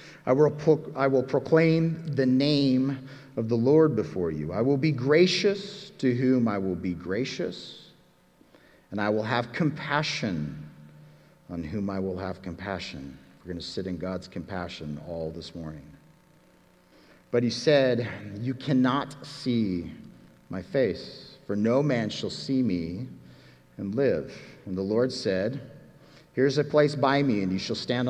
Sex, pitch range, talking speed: male, 90-135 Hz, 155 wpm